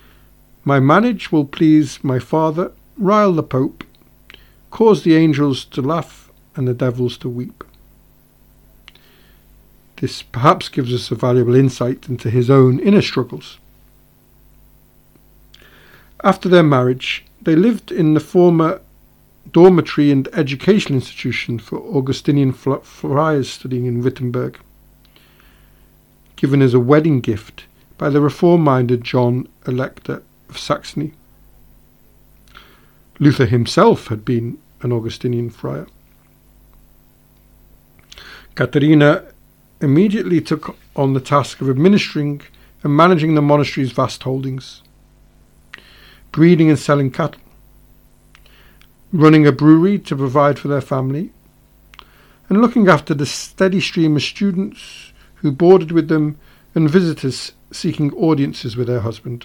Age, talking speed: 50-69, 115 wpm